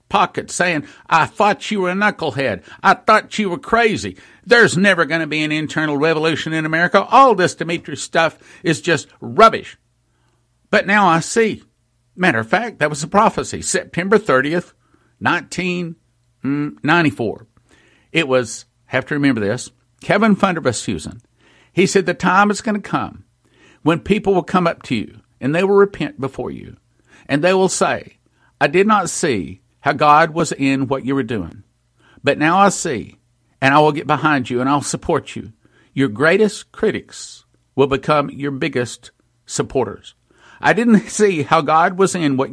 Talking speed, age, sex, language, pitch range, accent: 170 wpm, 60-79, male, English, 125-185 Hz, American